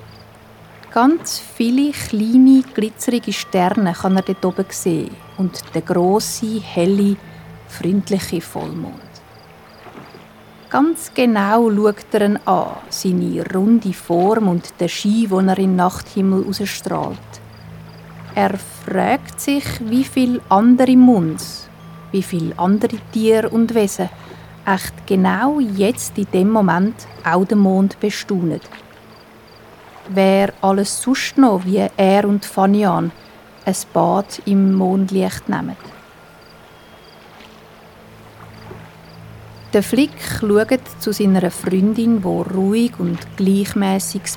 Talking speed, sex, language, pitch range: 105 wpm, female, German, 185-220 Hz